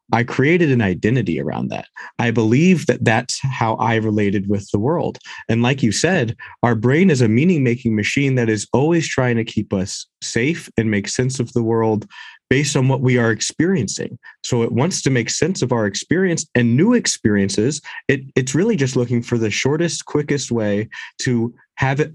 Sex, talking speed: male, 190 wpm